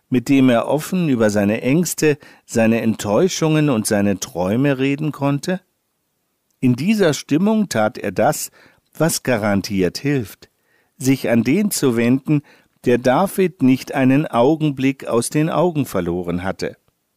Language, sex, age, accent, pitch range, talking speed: German, male, 50-69, German, 115-160 Hz, 135 wpm